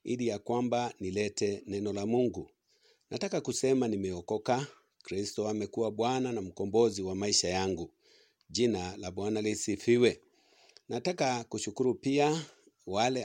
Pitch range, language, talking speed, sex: 110-135 Hz, English, 125 wpm, male